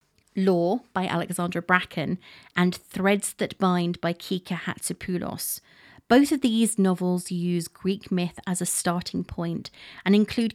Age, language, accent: 30-49, English, British